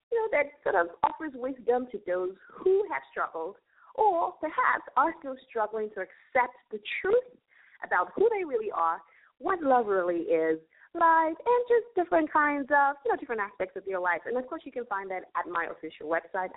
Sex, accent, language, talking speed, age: female, American, English, 195 wpm, 30-49